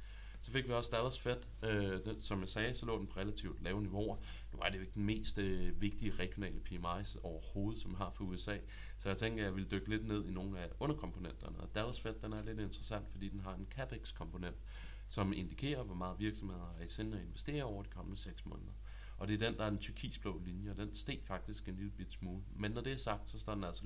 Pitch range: 95-105 Hz